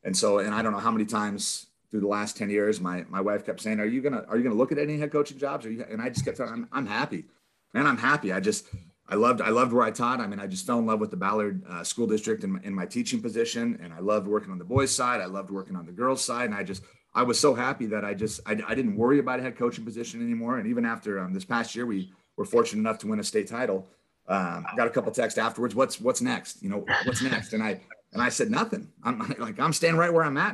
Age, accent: 30-49, American